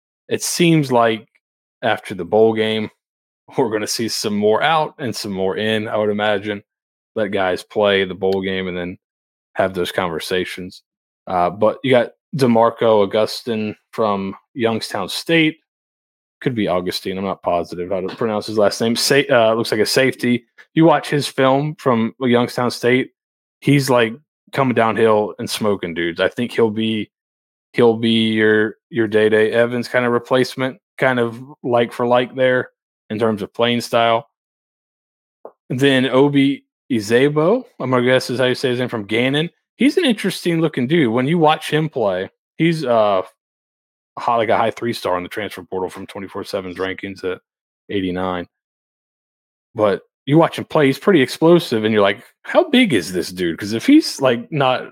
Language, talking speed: English, 175 wpm